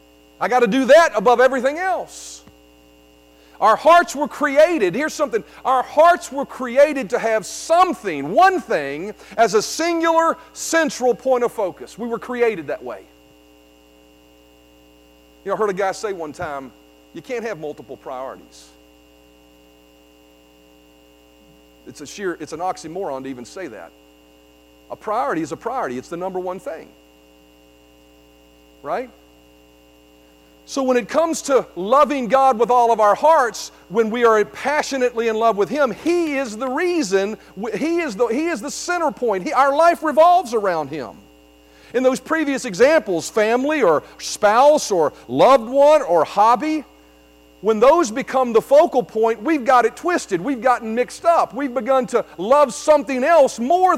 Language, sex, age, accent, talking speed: English, male, 40-59, American, 155 wpm